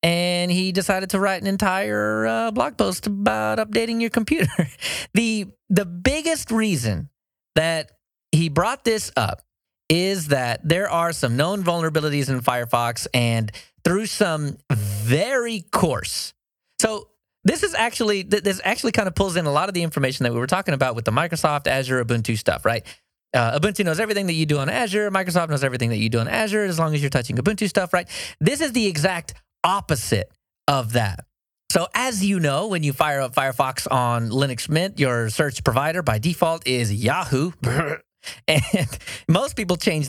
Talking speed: 180 wpm